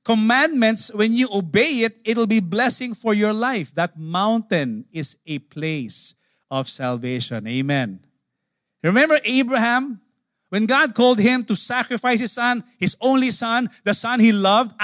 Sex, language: male, English